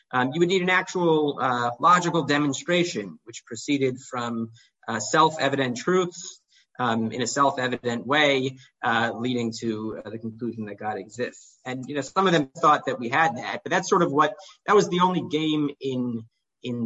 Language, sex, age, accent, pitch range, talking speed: English, male, 30-49, American, 120-165 Hz, 185 wpm